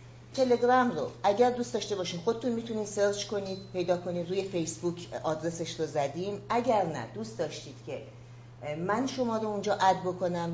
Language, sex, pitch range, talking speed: Persian, female, 160-205 Hz, 160 wpm